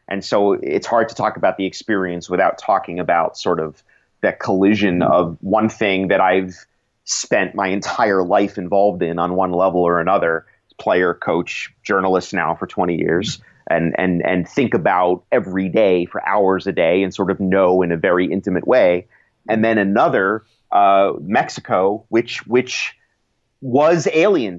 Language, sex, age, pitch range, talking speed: English, male, 30-49, 95-125 Hz, 165 wpm